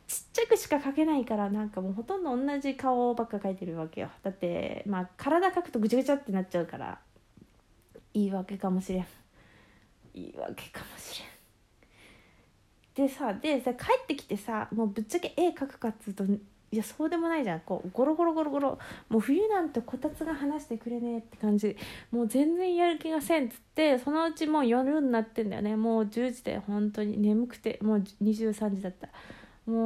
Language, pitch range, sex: Japanese, 200-280 Hz, female